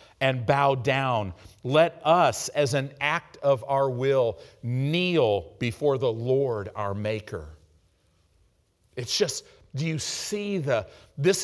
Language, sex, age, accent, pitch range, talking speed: English, male, 50-69, American, 110-160 Hz, 125 wpm